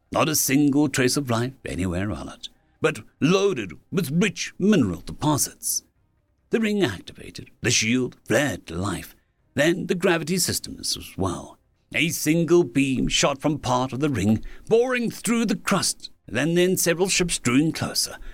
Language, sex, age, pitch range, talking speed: English, male, 60-79, 130-185 Hz, 160 wpm